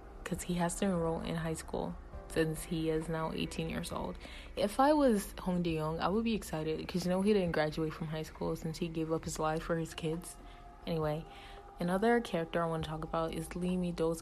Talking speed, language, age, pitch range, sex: 225 wpm, English, 20-39, 165-180 Hz, female